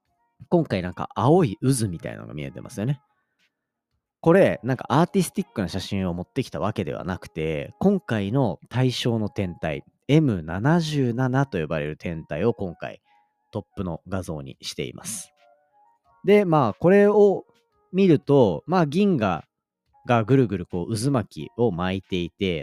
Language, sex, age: Japanese, male, 40-59